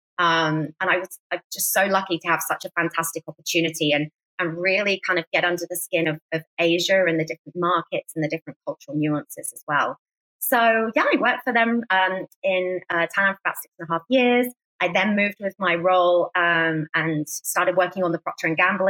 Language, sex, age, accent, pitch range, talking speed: English, female, 20-39, British, 170-200 Hz, 220 wpm